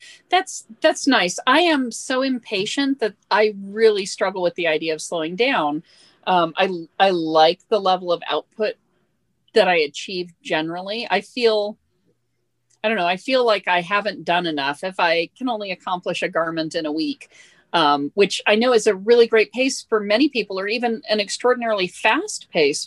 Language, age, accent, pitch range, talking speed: English, 40-59, American, 180-265 Hz, 180 wpm